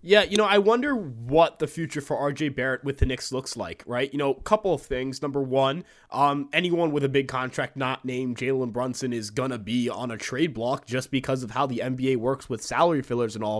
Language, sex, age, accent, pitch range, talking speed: English, male, 20-39, American, 125-145 Hz, 245 wpm